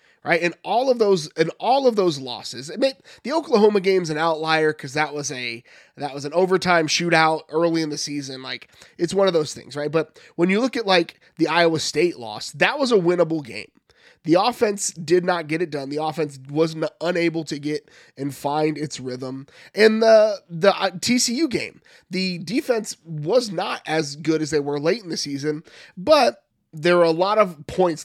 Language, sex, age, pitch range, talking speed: English, male, 30-49, 150-195 Hz, 200 wpm